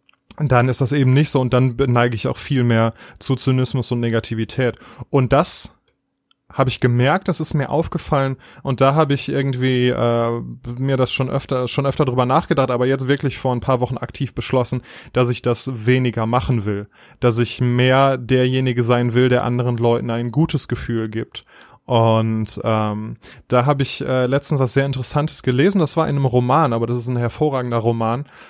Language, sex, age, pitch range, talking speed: German, male, 20-39, 120-140 Hz, 190 wpm